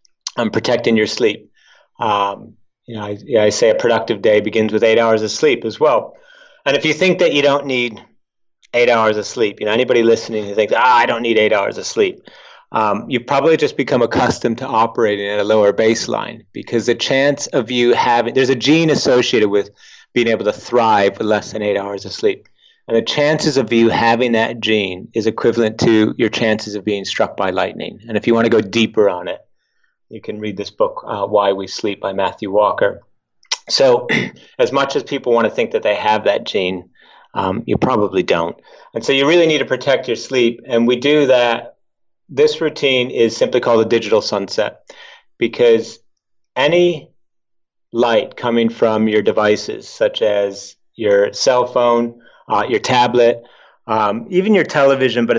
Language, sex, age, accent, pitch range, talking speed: English, male, 30-49, American, 110-150 Hz, 195 wpm